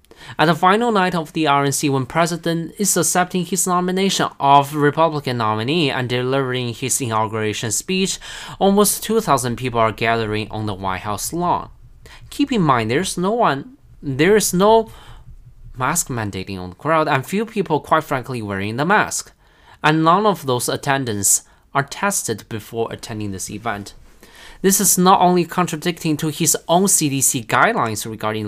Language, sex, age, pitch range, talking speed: English, male, 20-39, 115-180 Hz, 160 wpm